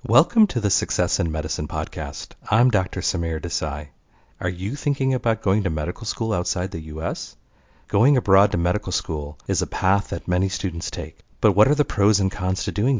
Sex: male